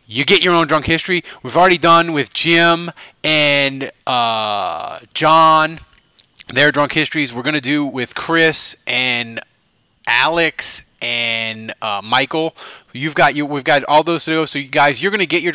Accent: American